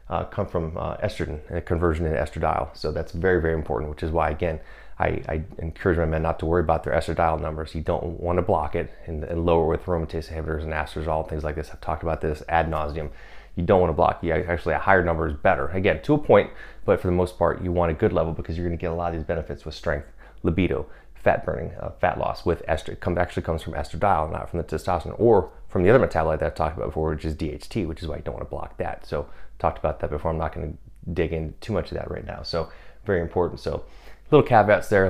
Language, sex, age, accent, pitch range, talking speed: English, male, 30-49, American, 80-90 Hz, 255 wpm